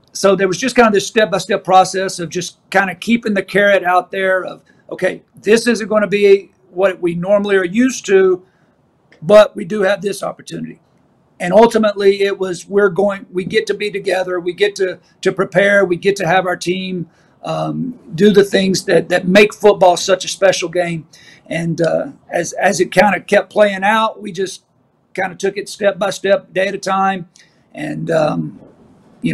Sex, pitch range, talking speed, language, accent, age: male, 180-205 Hz, 190 wpm, English, American, 50-69